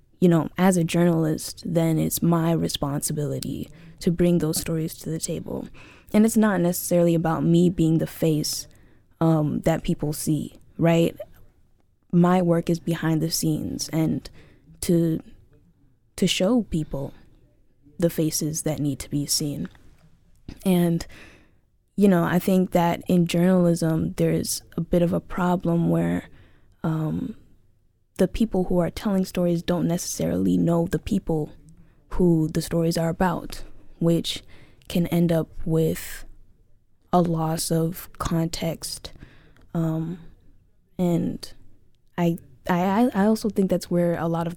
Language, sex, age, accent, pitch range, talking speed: English, female, 10-29, American, 155-175 Hz, 135 wpm